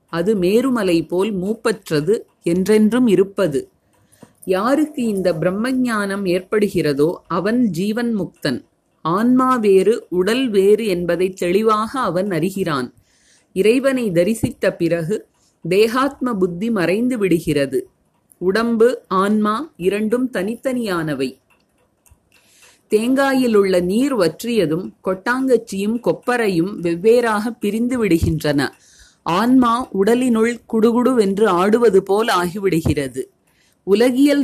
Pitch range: 180-235 Hz